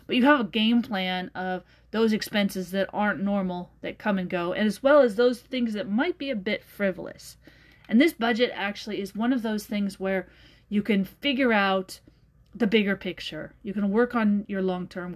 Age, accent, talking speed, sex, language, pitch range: 30-49, American, 200 wpm, female, English, 190-235 Hz